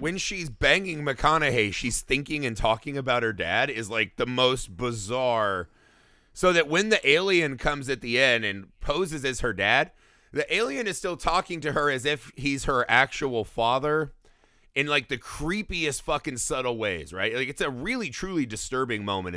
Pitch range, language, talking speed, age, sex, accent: 115-150 Hz, English, 180 wpm, 30-49, male, American